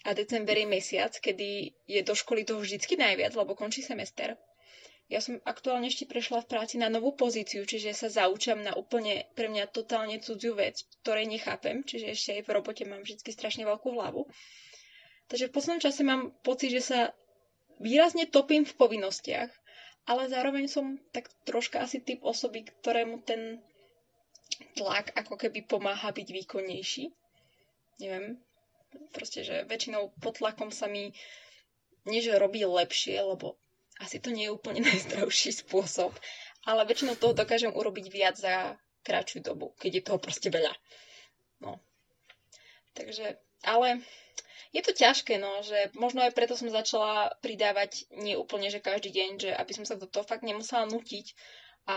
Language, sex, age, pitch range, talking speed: Slovak, female, 20-39, 205-245 Hz, 155 wpm